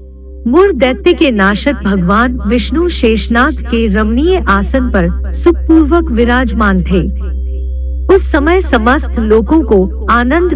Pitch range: 195-305 Hz